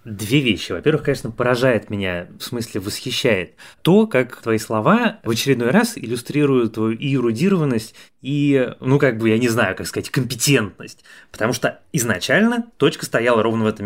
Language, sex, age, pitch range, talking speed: Russian, male, 20-39, 105-135 Hz, 160 wpm